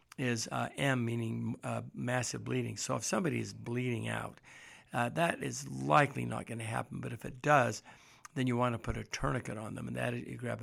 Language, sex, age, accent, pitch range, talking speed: English, male, 60-79, American, 110-125 Hz, 220 wpm